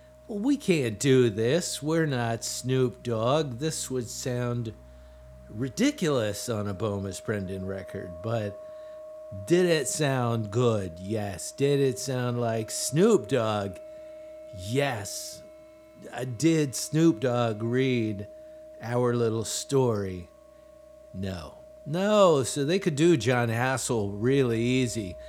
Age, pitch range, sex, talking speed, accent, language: 50-69, 105-145 Hz, male, 110 wpm, American, English